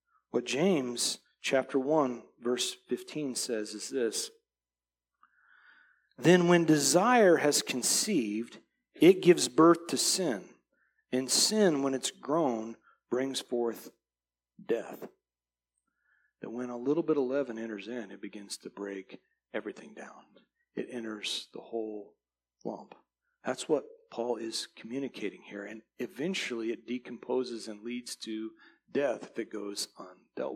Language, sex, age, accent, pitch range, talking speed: English, male, 40-59, American, 120-180 Hz, 130 wpm